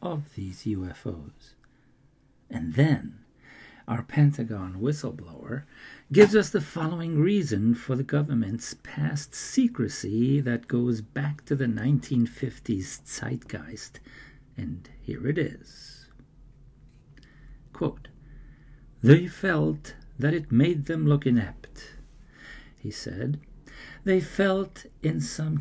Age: 50-69